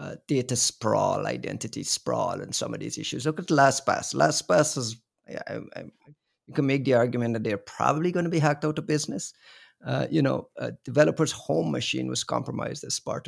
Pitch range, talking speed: 125-155 Hz, 200 wpm